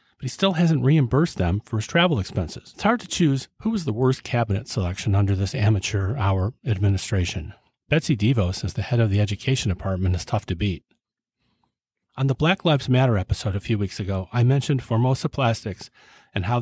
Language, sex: English, male